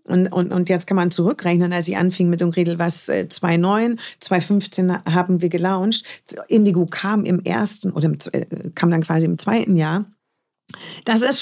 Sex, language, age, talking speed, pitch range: female, German, 30-49, 185 wpm, 175-205 Hz